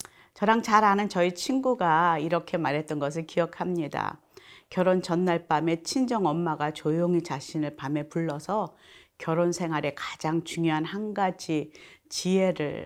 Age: 40-59